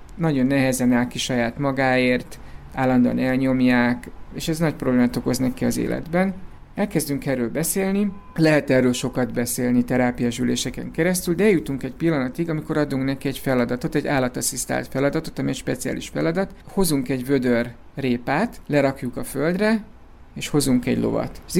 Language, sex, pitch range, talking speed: Hungarian, male, 125-155 Hz, 150 wpm